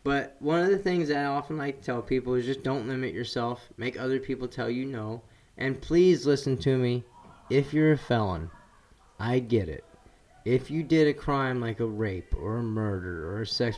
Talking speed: 215 wpm